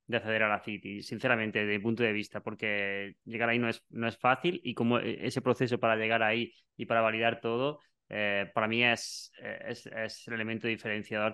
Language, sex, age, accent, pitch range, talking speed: Spanish, male, 20-39, Spanish, 115-130 Hz, 205 wpm